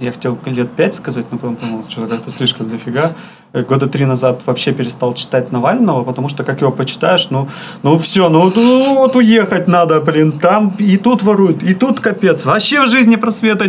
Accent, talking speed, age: native, 195 wpm, 30-49